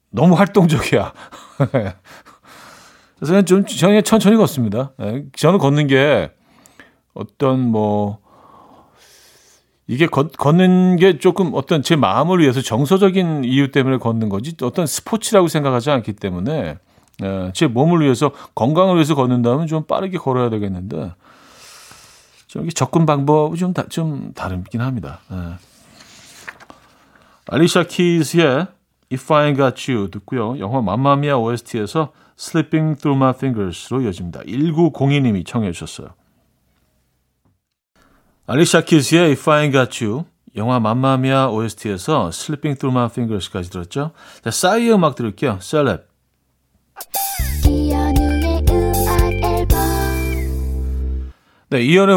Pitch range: 100-160 Hz